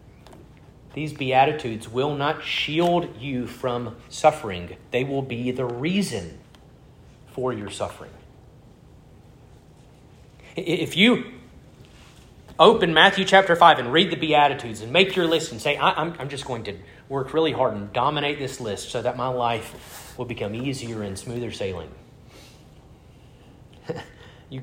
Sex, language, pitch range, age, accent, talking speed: male, English, 120-150 Hz, 30-49, American, 135 wpm